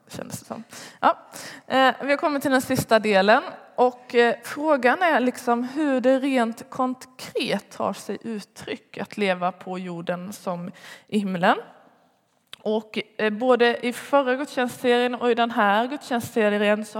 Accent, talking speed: native, 130 wpm